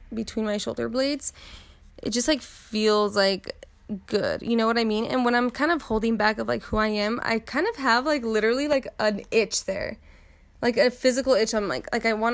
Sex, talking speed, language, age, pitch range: female, 225 wpm, English, 20-39, 195-230 Hz